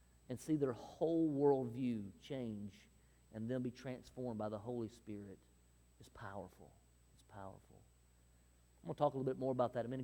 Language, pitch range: English, 115-145 Hz